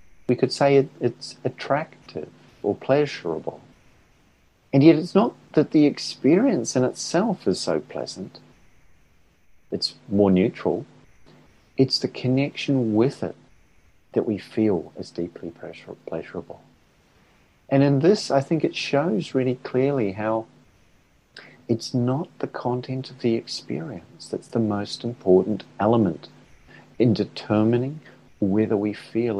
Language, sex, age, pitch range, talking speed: English, male, 50-69, 100-130 Hz, 120 wpm